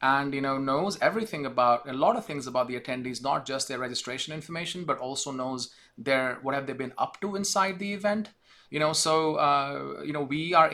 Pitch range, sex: 125-150 Hz, male